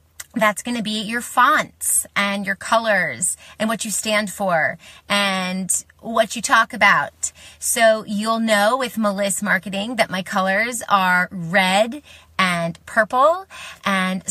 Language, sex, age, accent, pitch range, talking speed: English, female, 30-49, American, 195-240 Hz, 135 wpm